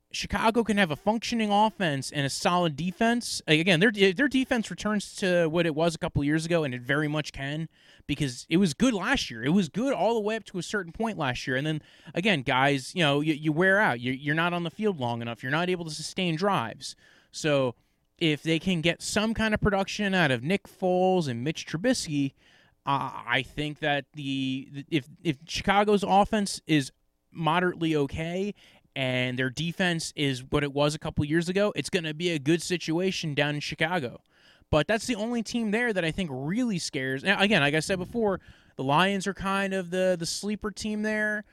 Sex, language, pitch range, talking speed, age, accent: male, English, 150-205 Hz, 210 wpm, 20-39, American